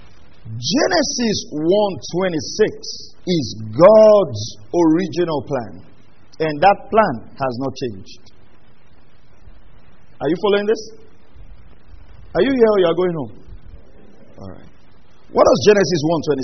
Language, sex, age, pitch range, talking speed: English, male, 50-69, 135-220 Hz, 105 wpm